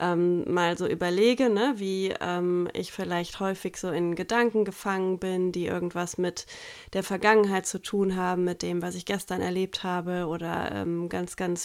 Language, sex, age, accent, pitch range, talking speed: German, female, 20-39, German, 185-225 Hz, 170 wpm